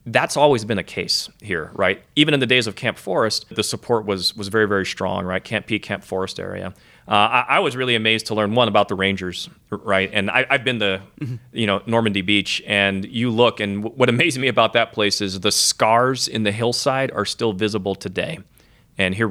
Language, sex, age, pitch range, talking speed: English, male, 30-49, 95-110 Hz, 220 wpm